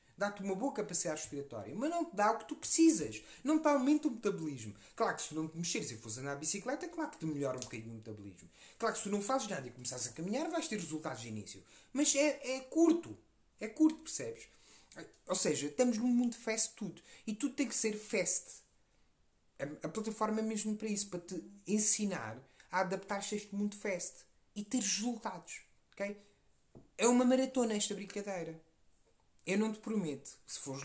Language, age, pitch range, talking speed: Portuguese, 30-49, 145-220 Hz, 200 wpm